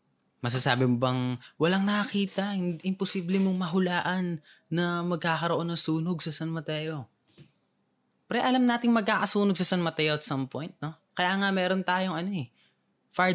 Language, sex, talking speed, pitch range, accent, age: Filipino, male, 150 wpm, 145-190 Hz, native, 20-39